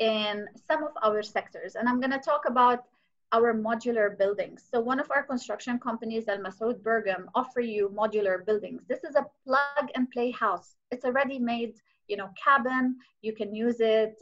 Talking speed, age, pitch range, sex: 175 wpm, 30-49, 205-245 Hz, female